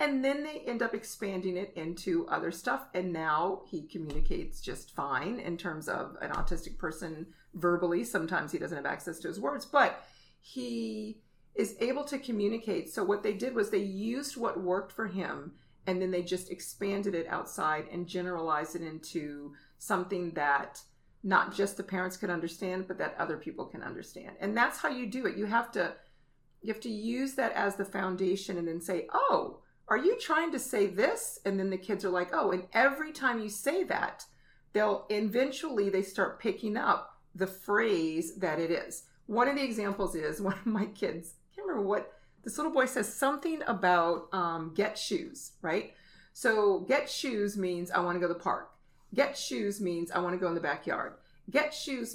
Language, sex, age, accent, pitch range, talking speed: English, female, 40-59, American, 175-235 Hz, 195 wpm